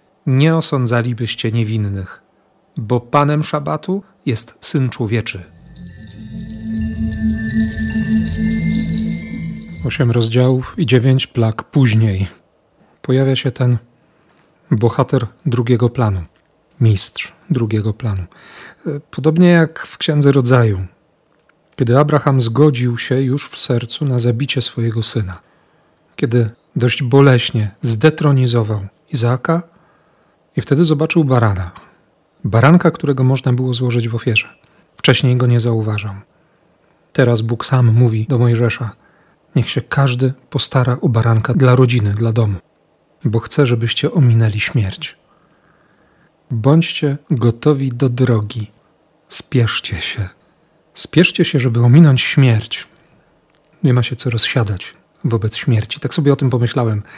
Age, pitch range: 40-59, 115-150 Hz